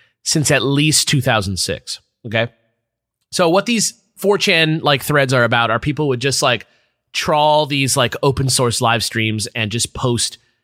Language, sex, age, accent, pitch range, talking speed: English, male, 30-49, American, 125-165 Hz, 160 wpm